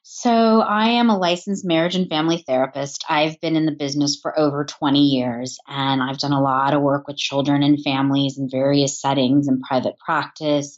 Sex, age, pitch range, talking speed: female, 30-49, 145-200 Hz, 195 wpm